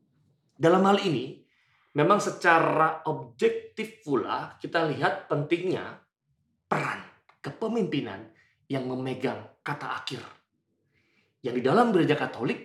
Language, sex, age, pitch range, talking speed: Indonesian, male, 30-49, 140-205 Hz, 100 wpm